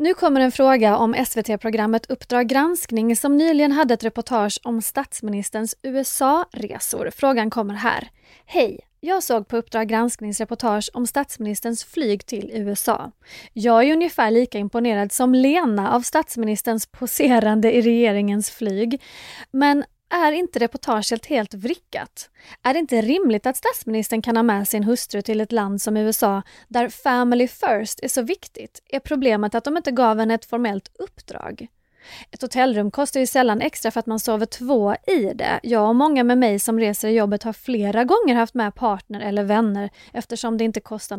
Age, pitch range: 30-49, 215-260 Hz